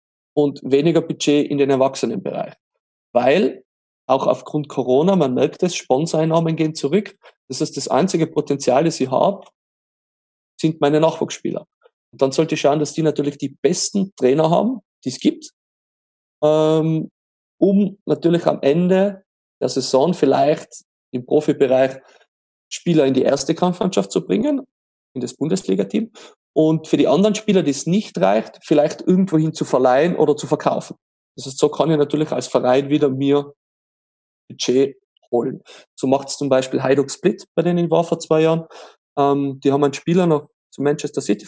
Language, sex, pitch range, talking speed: German, male, 140-170 Hz, 165 wpm